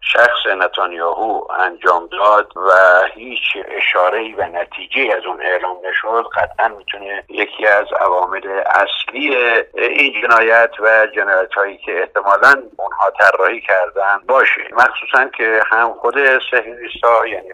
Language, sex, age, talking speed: Persian, male, 50-69, 125 wpm